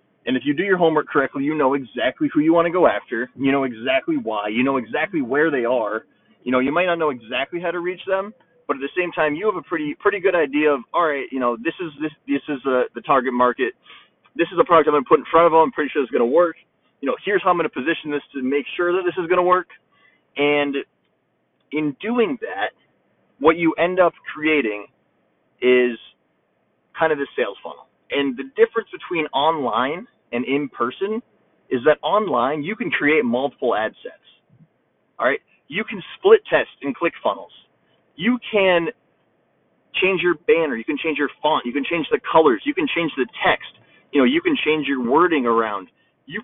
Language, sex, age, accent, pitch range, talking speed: English, male, 20-39, American, 140-200 Hz, 220 wpm